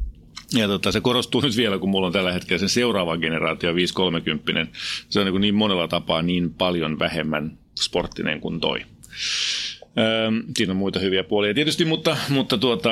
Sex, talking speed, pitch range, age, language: male, 165 wpm, 85-110 Hz, 30-49, Finnish